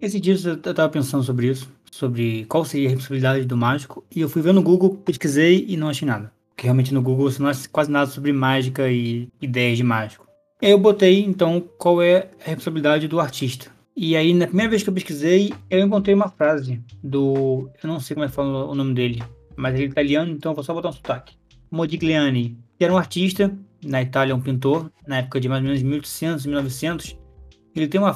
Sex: male